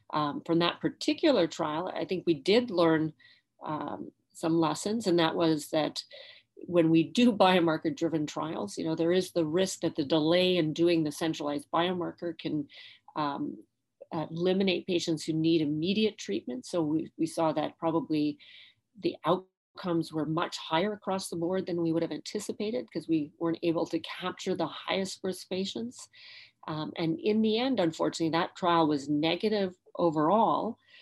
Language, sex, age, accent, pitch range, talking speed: English, female, 40-59, American, 160-185 Hz, 165 wpm